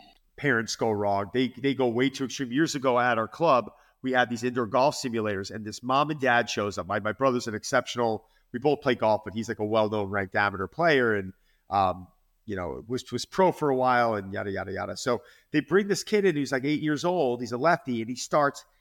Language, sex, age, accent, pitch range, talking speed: English, male, 30-49, American, 115-155 Hz, 240 wpm